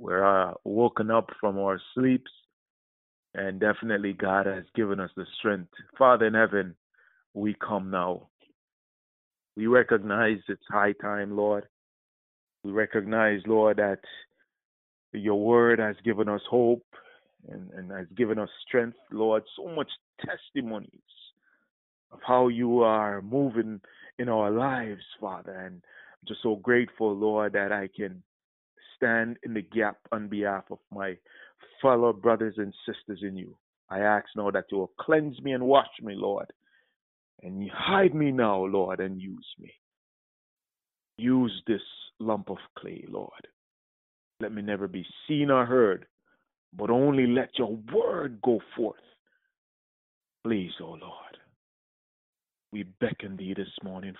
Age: 30-49